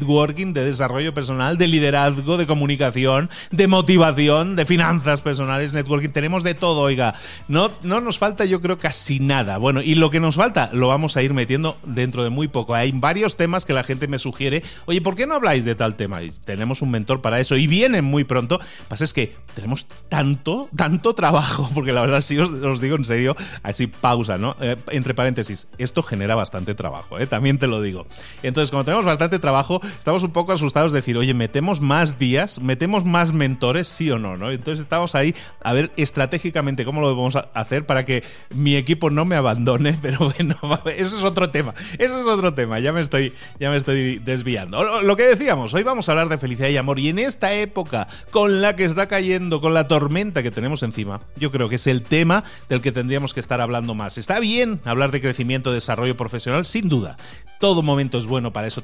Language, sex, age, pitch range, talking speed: Spanish, male, 30-49, 125-170 Hz, 215 wpm